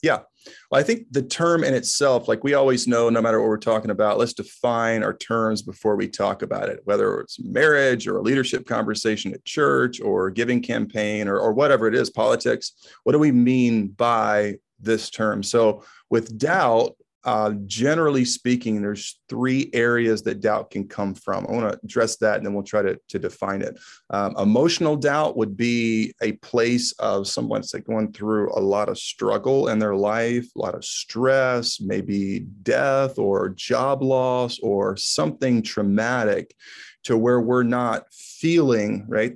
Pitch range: 105-125 Hz